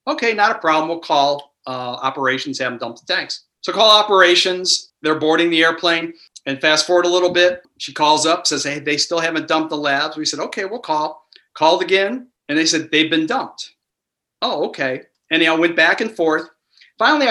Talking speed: 200 wpm